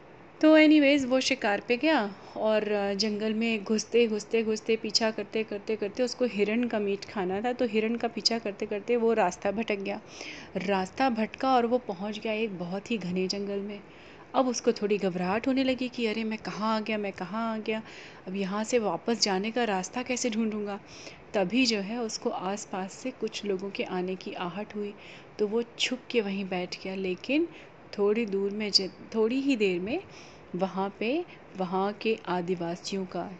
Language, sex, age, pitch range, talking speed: Hindi, female, 30-49, 195-235 Hz, 185 wpm